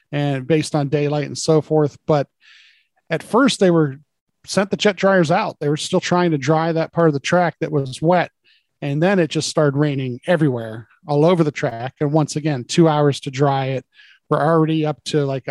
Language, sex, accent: English, male, American